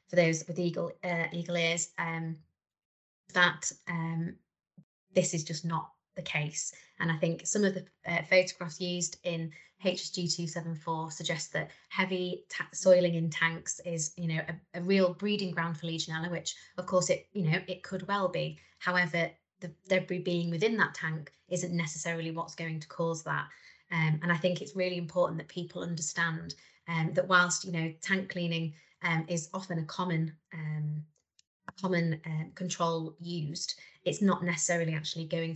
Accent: British